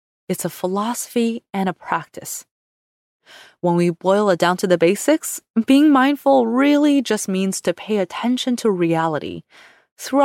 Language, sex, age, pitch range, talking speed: English, female, 20-39, 175-245 Hz, 145 wpm